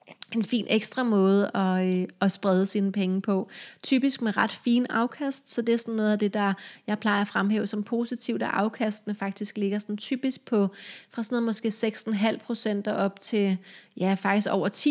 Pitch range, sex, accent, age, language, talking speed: 195-225 Hz, female, native, 30-49, Danish, 195 wpm